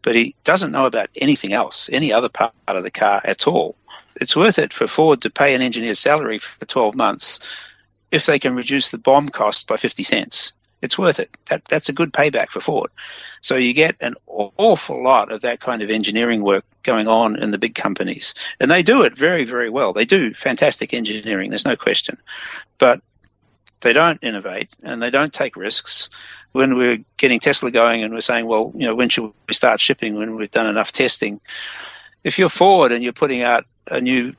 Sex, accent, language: male, Australian, English